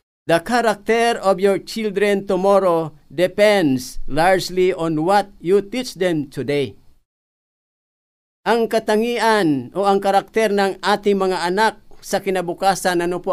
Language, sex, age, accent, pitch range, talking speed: Filipino, male, 50-69, native, 145-200 Hz, 120 wpm